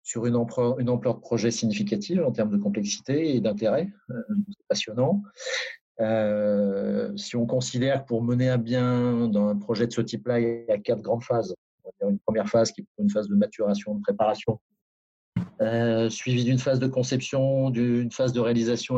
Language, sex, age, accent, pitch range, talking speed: French, male, 40-59, French, 105-130 Hz, 180 wpm